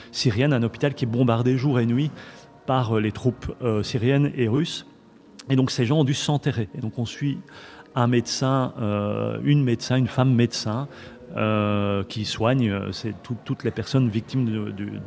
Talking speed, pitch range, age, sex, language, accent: 155 wpm, 110-135 Hz, 30-49, male, French, French